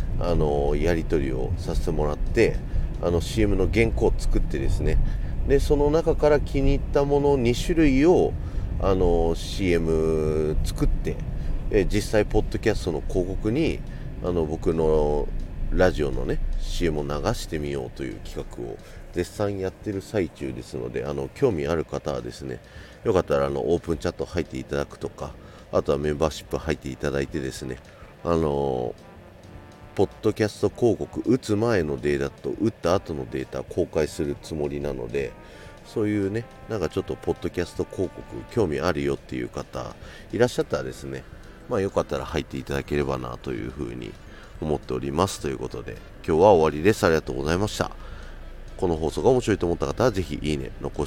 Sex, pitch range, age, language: male, 75-105 Hz, 40-59, Japanese